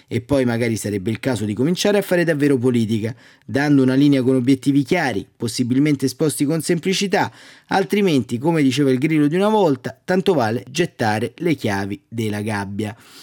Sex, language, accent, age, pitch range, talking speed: male, Italian, native, 30-49, 115-140 Hz, 170 wpm